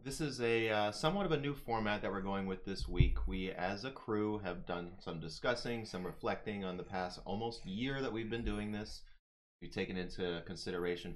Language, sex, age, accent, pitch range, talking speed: English, male, 30-49, American, 85-100 Hz, 210 wpm